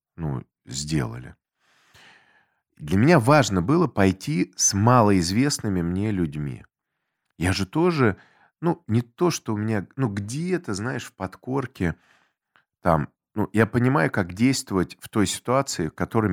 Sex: male